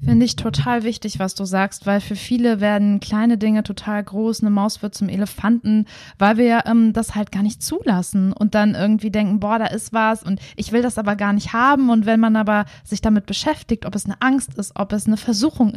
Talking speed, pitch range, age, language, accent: 230 wpm, 205-235 Hz, 20-39, German, German